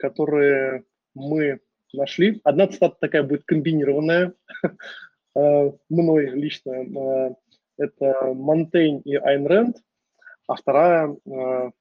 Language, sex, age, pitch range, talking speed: Russian, male, 20-39, 140-175 Hz, 85 wpm